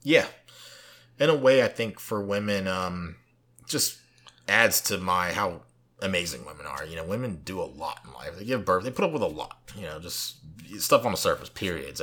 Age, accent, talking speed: 30-49, American, 210 wpm